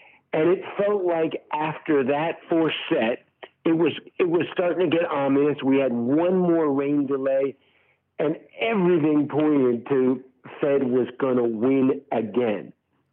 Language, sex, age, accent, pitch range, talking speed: English, male, 50-69, American, 130-165 Hz, 145 wpm